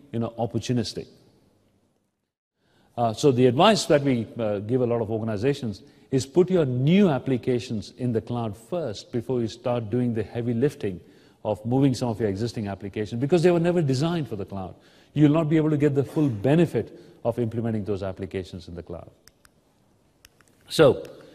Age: 50-69